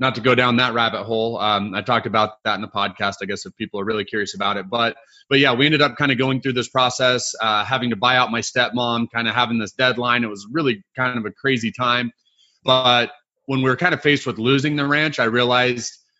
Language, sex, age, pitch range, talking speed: English, male, 30-49, 115-130 Hz, 255 wpm